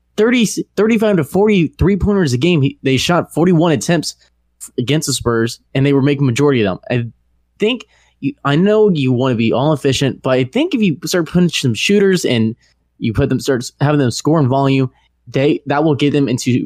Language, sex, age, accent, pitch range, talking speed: English, male, 20-39, American, 120-155 Hz, 215 wpm